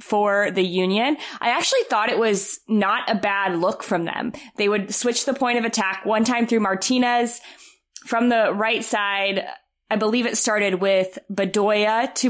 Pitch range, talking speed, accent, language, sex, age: 195-240 Hz, 175 wpm, American, English, female, 20-39